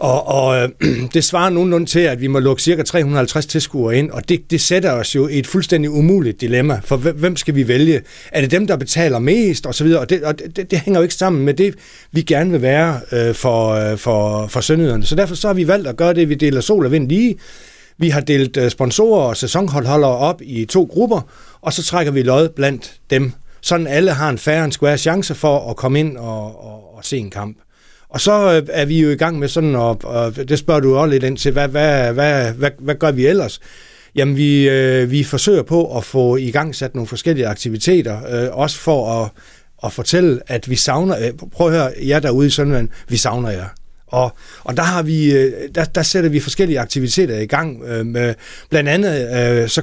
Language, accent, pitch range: Danish, native, 125-165 Hz